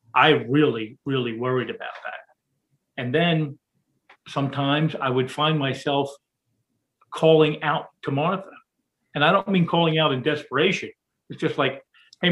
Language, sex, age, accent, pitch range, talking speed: English, male, 50-69, American, 130-160 Hz, 140 wpm